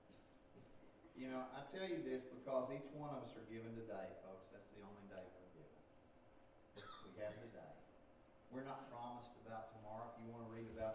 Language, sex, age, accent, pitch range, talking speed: English, male, 50-69, American, 105-155 Hz, 180 wpm